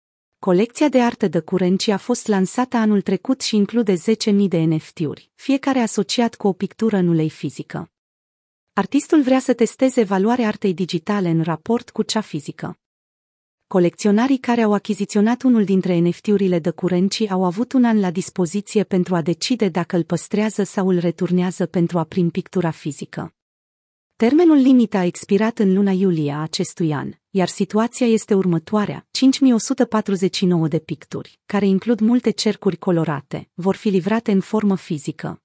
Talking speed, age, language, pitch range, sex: 155 wpm, 30-49, Romanian, 175-225 Hz, female